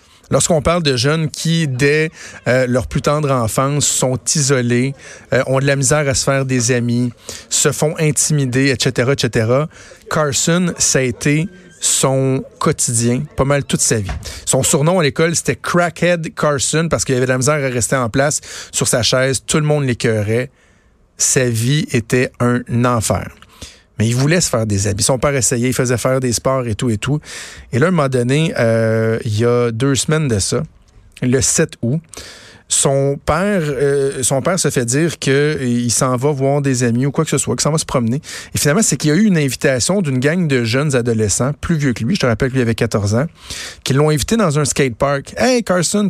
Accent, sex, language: Canadian, male, French